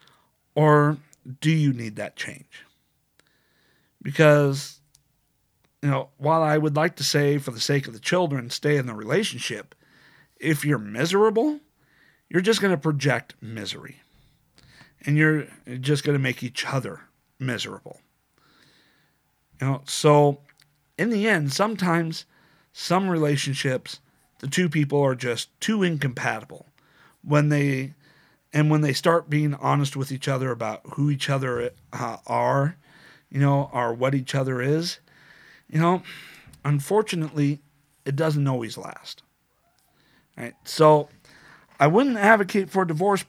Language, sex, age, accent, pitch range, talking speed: English, male, 50-69, American, 140-165 Hz, 135 wpm